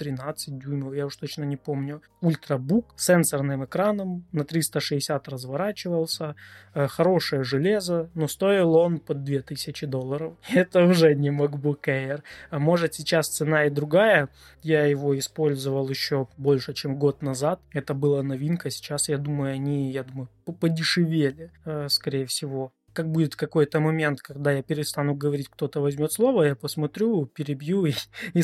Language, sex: Russian, male